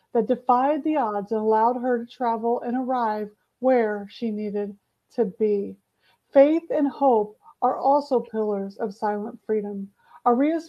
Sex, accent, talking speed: female, American, 145 wpm